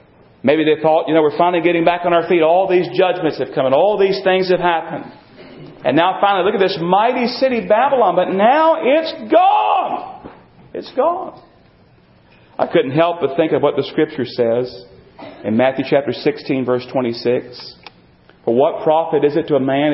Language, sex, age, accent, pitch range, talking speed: English, male, 40-59, American, 135-200 Hz, 185 wpm